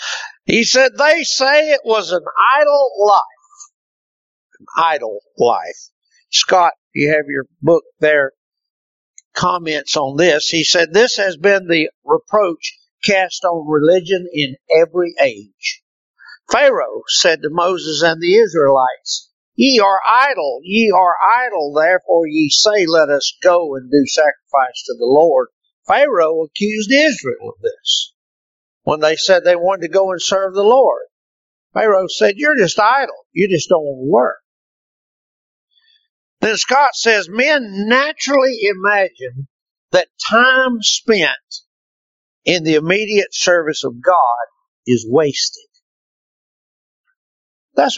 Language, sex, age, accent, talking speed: English, male, 50-69, American, 130 wpm